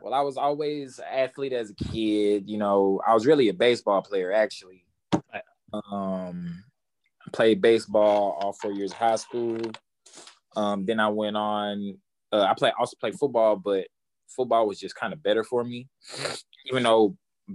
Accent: American